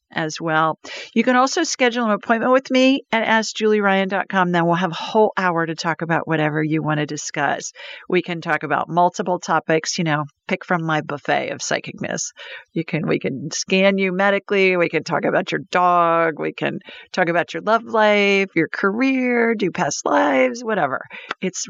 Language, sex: English, female